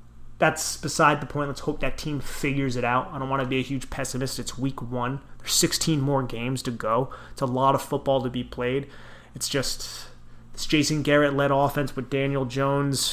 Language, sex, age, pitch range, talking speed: English, male, 30-49, 125-140 Hz, 210 wpm